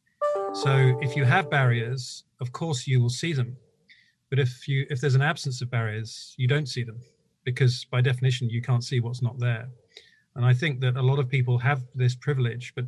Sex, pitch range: male, 120-140 Hz